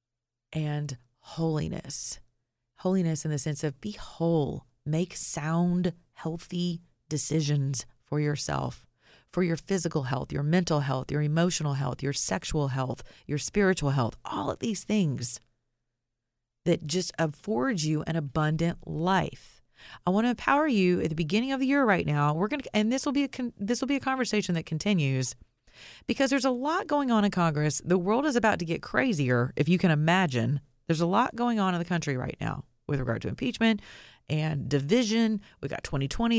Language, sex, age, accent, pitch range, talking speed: English, female, 30-49, American, 140-195 Hz, 180 wpm